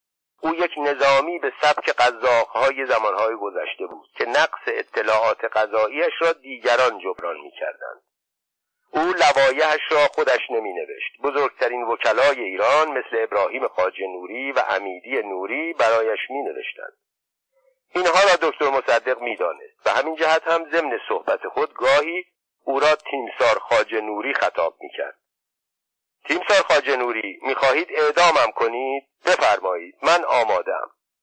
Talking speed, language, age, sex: 135 wpm, Persian, 50-69, male